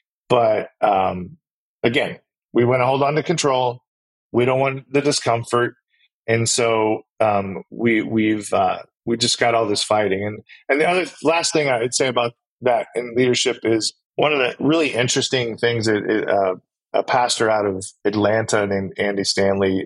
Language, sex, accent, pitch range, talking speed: English, male, American, 110-130 Hz, 175 wpm